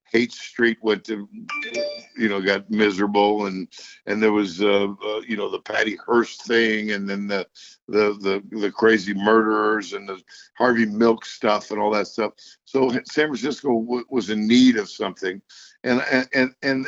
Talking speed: 165 wpm